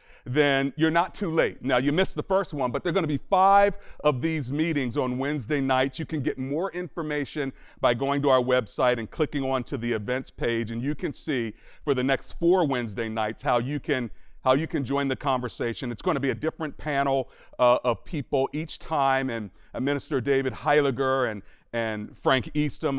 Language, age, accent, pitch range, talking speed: English, 40-59, American, 130-155 Hz, 210 wpm